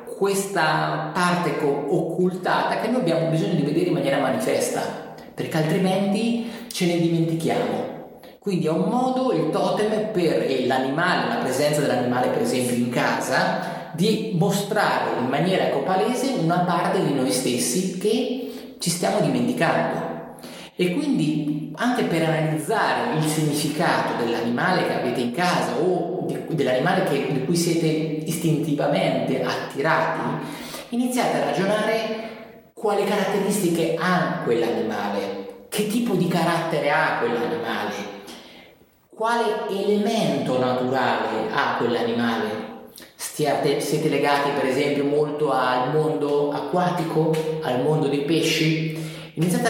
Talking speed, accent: 115 wpm, native